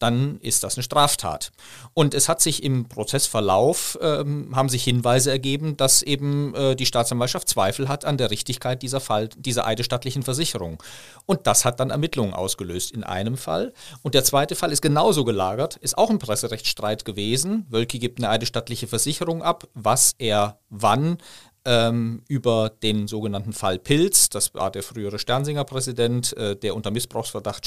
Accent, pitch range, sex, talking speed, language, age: German, 100-130 Hz, male, 155 wpm, German, 40-59